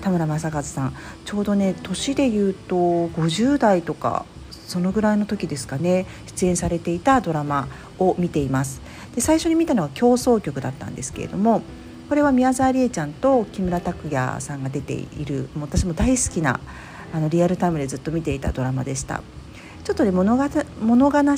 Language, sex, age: Japanese, female, 50-69